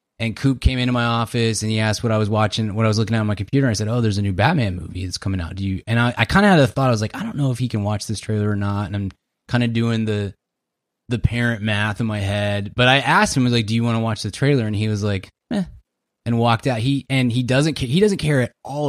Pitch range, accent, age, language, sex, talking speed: 110-135 Hz, American, 20-39, English, male, 320 wpm